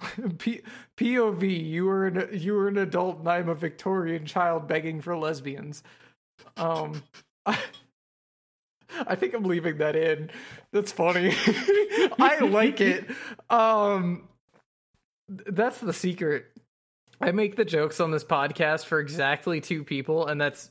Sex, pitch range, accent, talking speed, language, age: male, 155-200 Hz, American, 130 wpm, English, 20-39